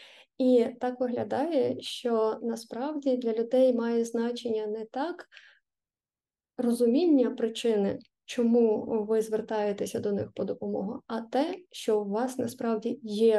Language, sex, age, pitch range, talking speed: Ukrainian, female, 20-39, 225-260 Hz, 120 wpm